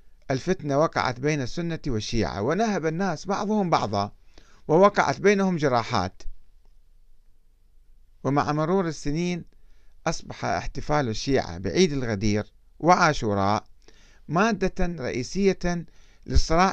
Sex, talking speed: male, 85 wpm